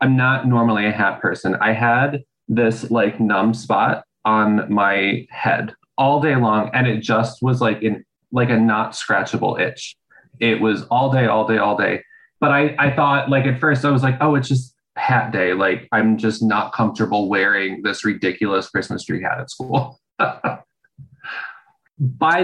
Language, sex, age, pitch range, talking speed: English, male, 20-39, 110-130 Hz, 175 wpm